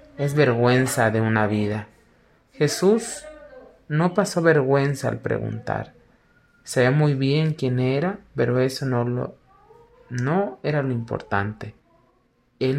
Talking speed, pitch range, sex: 115 wpm, 125-165 Hz, male